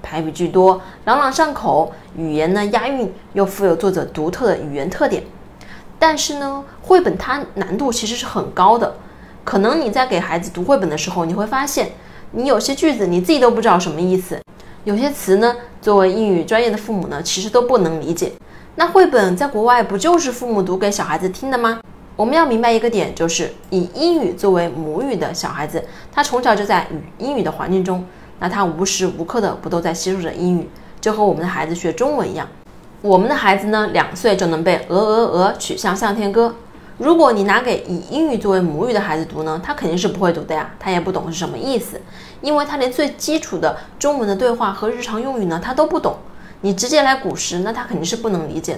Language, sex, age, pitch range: Chinese, female, 20-39, 175-240 Hz